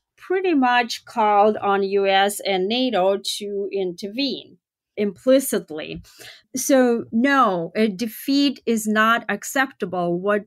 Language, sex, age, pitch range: English, female, 30-49, 195-250 Hz